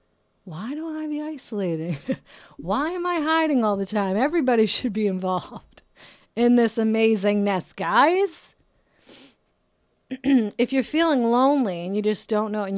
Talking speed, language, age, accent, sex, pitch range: 140 wpm, English, 30-49, American, female, 175-220 Hz